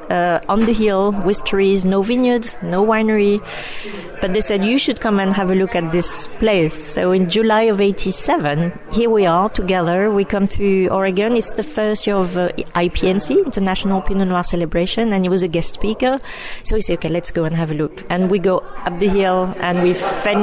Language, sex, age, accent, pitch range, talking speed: English, female, 40-59, French, 180-225 Hz, 210 wpm